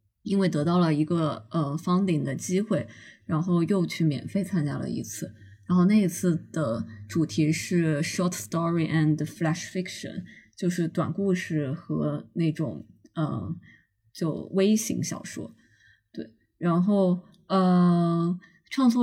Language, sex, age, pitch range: Chinese, female, 20-39, 155-190 Hz